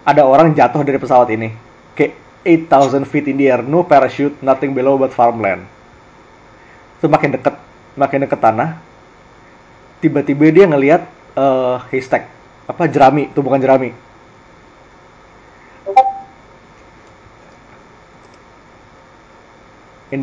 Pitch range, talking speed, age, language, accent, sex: 135-170 Hz, 105 wpm, 20-39, Indonesian, native, male